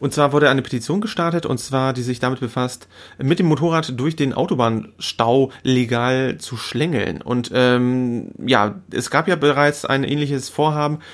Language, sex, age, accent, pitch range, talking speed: German, male, 30-49, German, 120-140 Hz, 165 wpm